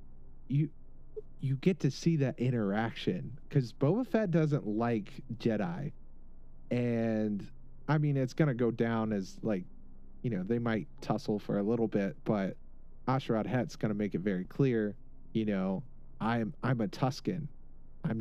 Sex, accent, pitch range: male, American, 105-140 Hz